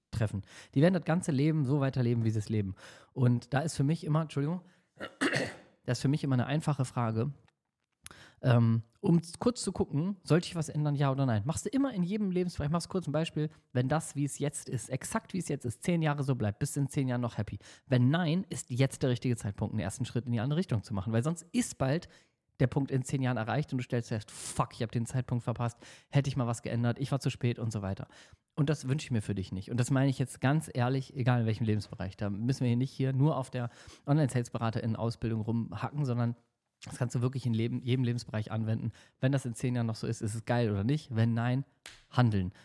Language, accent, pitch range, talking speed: German, German, 115-145 Hz, 250 wpm